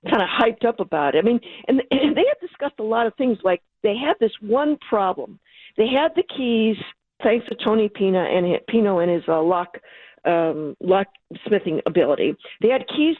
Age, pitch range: 50-69, 180-225 Hz